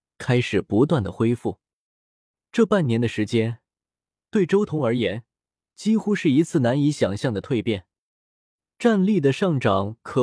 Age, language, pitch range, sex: 20-39, Chinese, 110-165 Hz, male